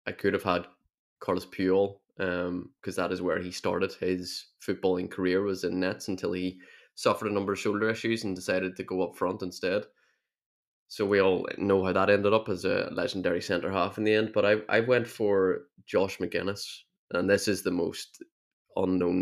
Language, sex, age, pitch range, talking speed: English, male, 20-39, 90-105 Hz, 195 wpm